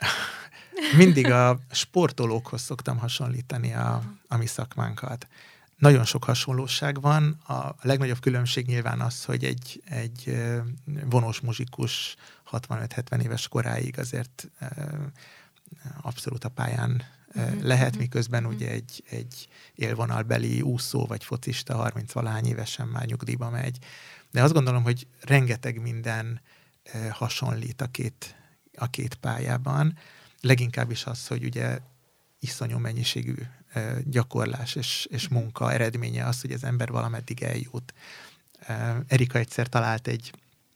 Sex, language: male, Hungarian